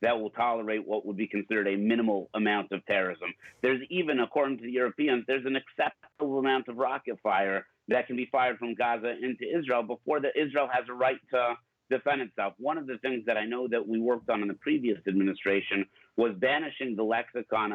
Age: 50-69